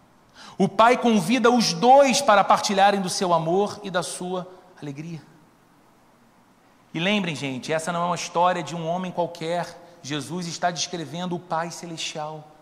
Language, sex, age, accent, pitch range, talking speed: Portuguese, male, 40-59, Brazilian, 185-280 Hz, 150 wpm